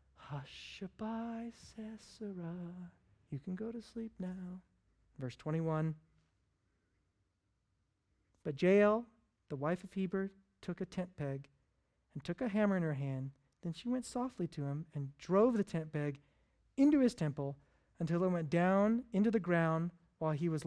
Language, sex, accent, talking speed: English, male, American, 150 wpm